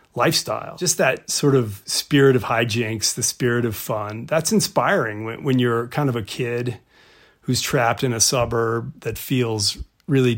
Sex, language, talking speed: male, English, 160 wpm